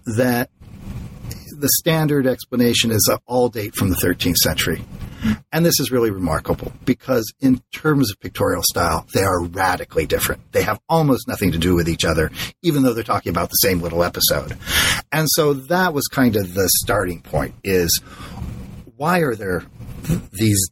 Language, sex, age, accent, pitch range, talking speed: English, male, 50-69, American, 95-135 Hz, 170 wpm